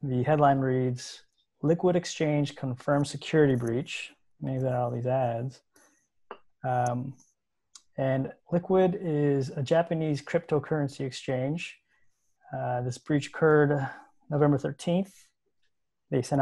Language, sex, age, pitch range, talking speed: English, male, 20-39, 130-165 Hz, 110 wpm